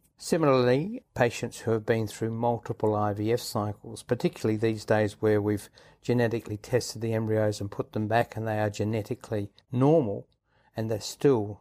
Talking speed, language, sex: 155 wpm, English, male